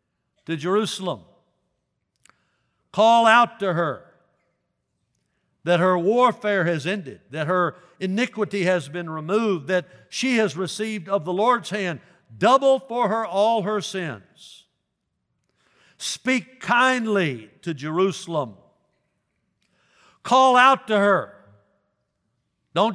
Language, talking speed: English, 105 wpm